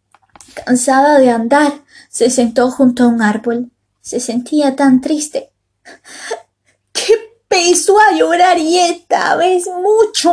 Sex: female